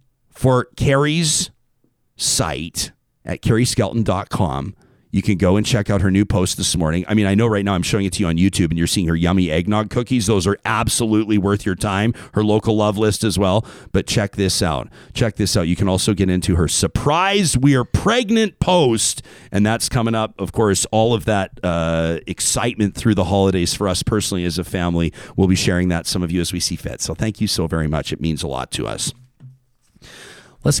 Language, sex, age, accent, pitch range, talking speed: English, male, 40-59, American, 95-130 Hz, 215 wpm